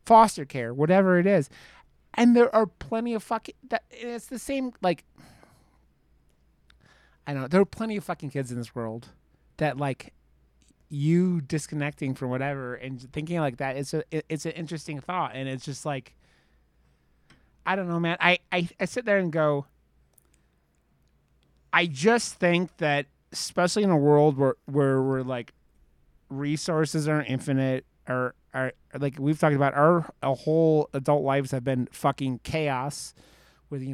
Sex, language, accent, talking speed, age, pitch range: male, English, American, 165 wpm, 30-49, 130-175 Hz